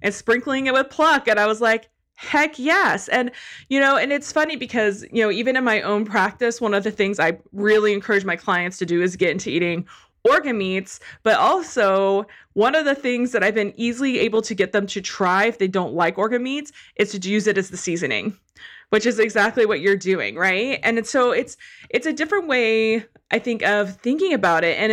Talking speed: 220 wpm